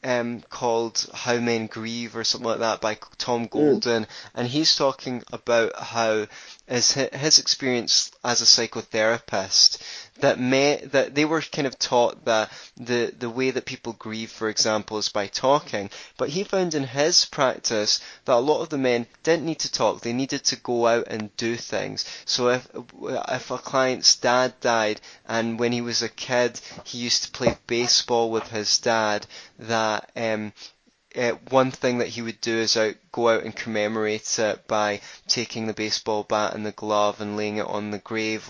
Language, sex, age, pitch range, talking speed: English, male, 20-39, 110-125 Hz, 180 wpm